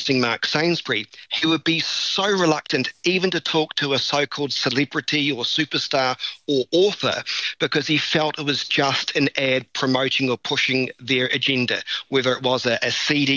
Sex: male